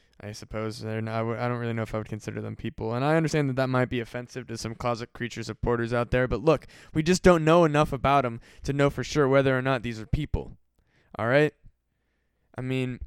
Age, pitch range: 20-39, 110-140 Hz